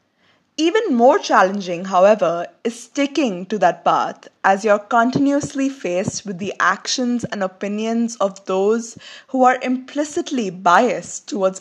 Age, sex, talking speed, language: 20-39, female, 135 wpm, English